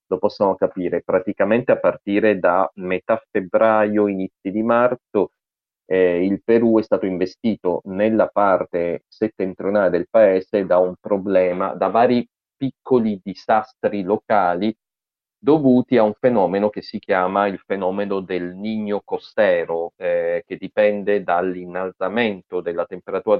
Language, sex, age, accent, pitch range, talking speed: Italian, male, 30-49, native, 90-115 Hz, 125 wpm